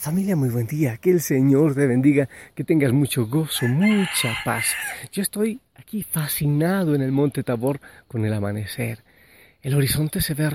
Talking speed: 170 wpm